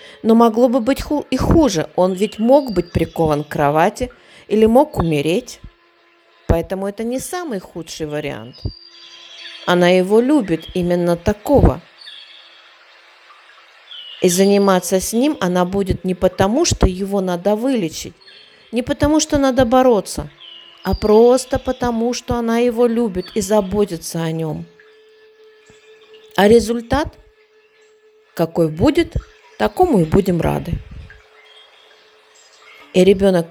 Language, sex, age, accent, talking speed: Russian, female, 40-59, native, 115 wpm